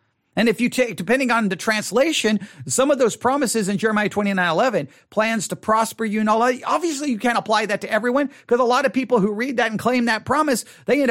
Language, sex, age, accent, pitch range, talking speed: English, male, 50-69, American, 180-260 Hz, 240 wpm